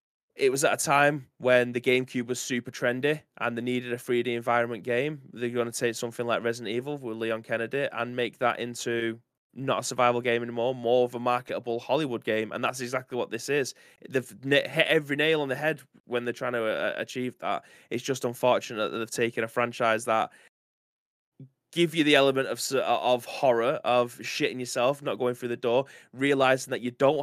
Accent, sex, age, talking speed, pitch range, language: British, male, 20-39, 200 wpm, 115-130 Hz, English